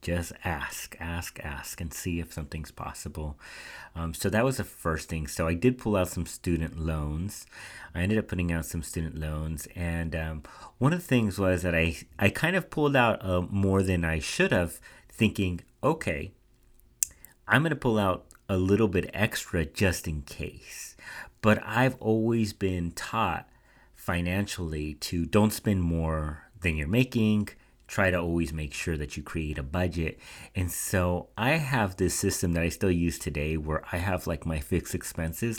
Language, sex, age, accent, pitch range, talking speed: English, male, 40-59, American, 80-95 Hz, 180 wpm